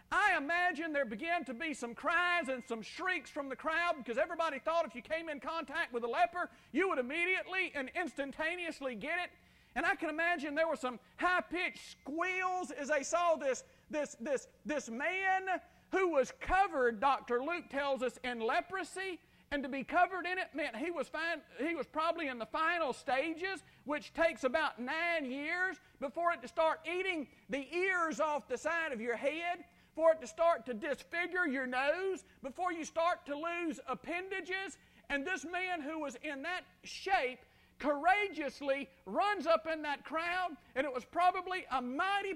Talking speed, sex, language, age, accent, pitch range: 180 wpm, male, English, 50-69, American, 270-350 Hz